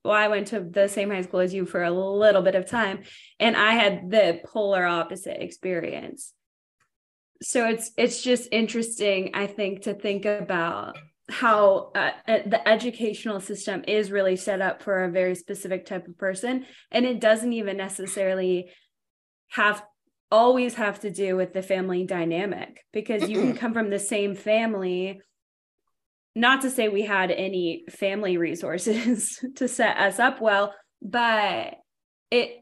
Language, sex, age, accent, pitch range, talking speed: English, female, 20-39, American, 185-220 Hz, 160 wpm